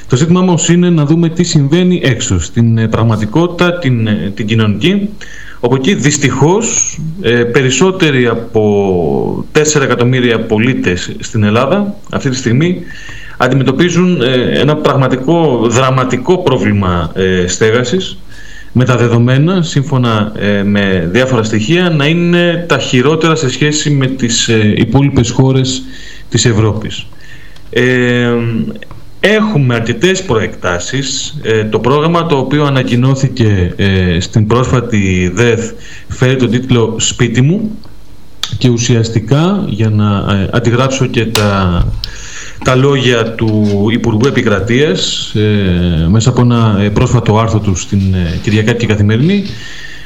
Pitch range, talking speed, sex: 110-140 Hz, 115 wpm, male